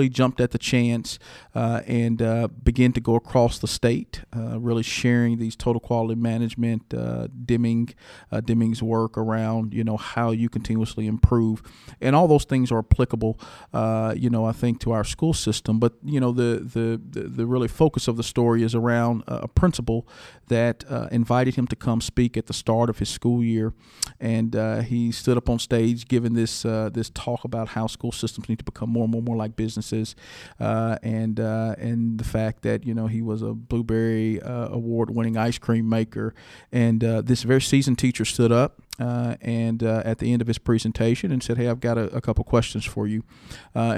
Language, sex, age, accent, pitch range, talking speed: English, male, 40-59, American, 110-120 Hz, 205 wpm